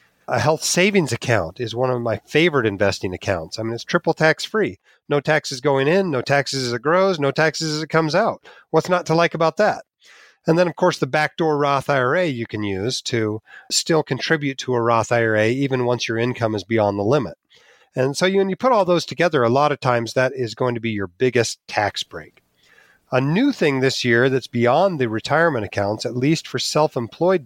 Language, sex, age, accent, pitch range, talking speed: English, male, 30-49, American, 115-150 Hz, 215 wpm